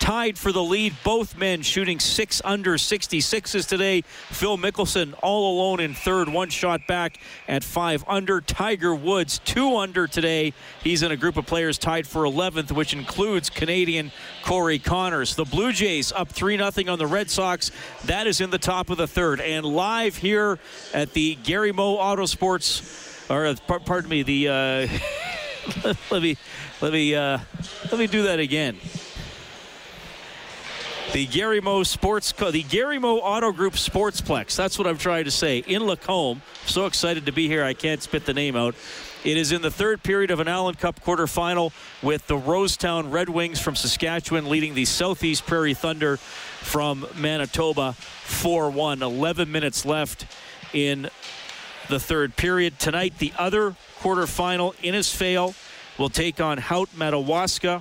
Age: 40-59